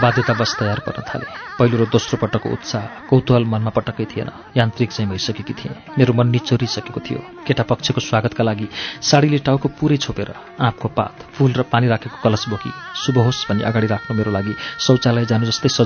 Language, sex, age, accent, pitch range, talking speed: English, male, 40-59, Indian, 115-145 Hz, 160 wpm